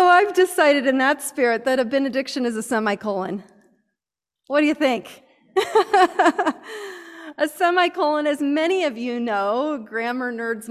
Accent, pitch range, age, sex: American, 205-290 Hz, 30-49, female